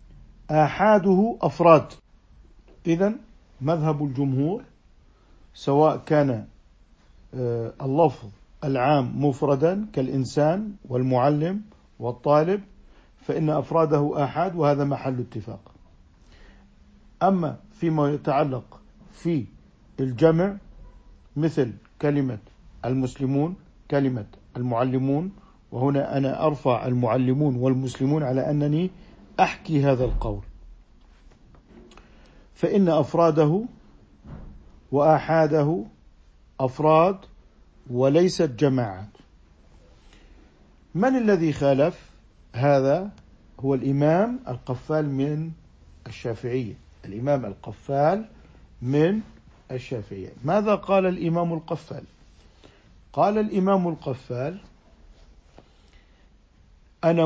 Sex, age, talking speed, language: male, 50-69, 70 wpm, Arabic